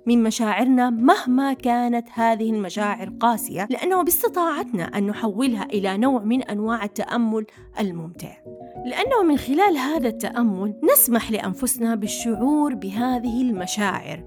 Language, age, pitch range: Arabic, 30-49, 220-310 Hz